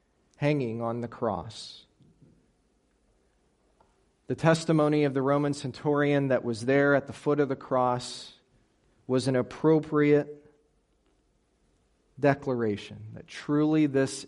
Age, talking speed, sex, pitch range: 40-59, 110 wpm, male, 110-145 Hz